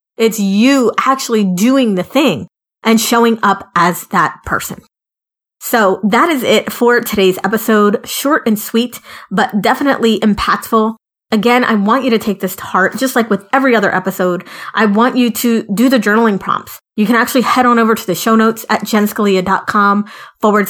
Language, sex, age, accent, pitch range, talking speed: English, female, 30-49, American, 195-230 Hz, 175 wpm